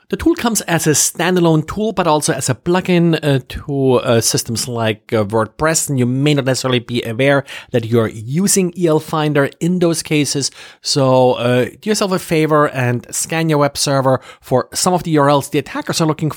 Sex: male